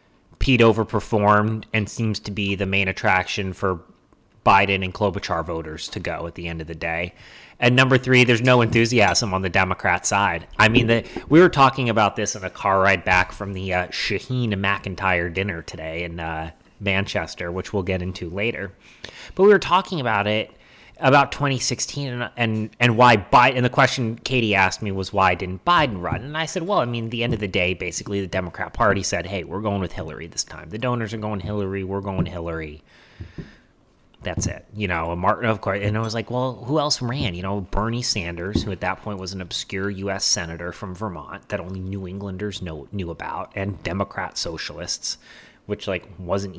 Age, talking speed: 30-49, 205 wpm